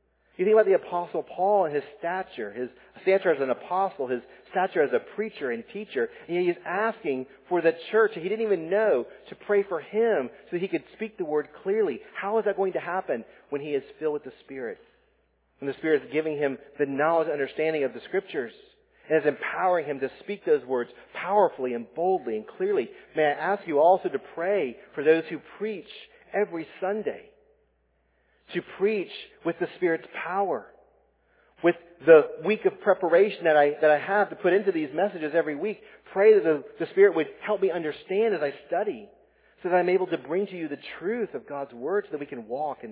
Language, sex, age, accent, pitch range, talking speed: English, male, 40-59, American, 140-215 Hz, 210 wpm